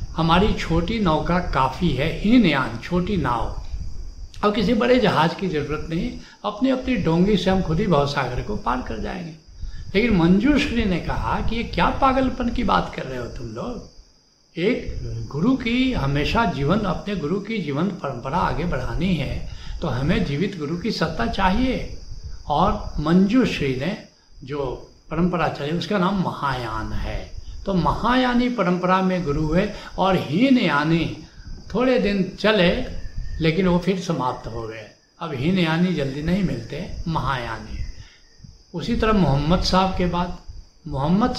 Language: Hindi